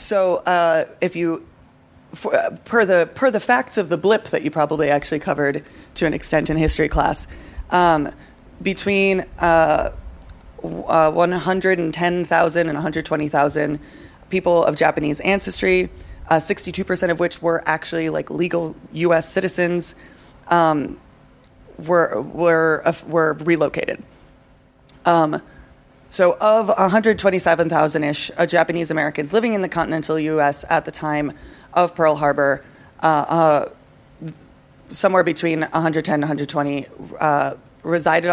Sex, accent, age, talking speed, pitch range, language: female, American, 20-39, 125 wpm, 150-180 Hz, English